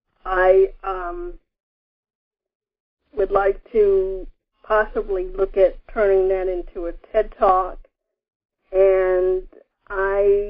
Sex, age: female, 40-59